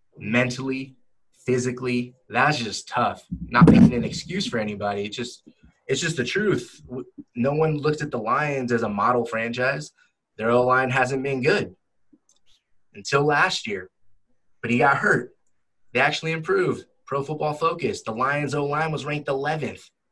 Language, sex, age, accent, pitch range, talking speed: English, male, 20-39, American, 120-145 Hz, 150 wpm